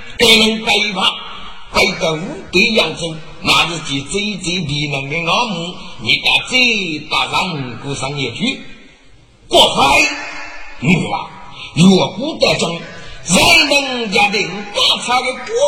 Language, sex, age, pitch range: Chinese, male, 50-69, 150-235 Hz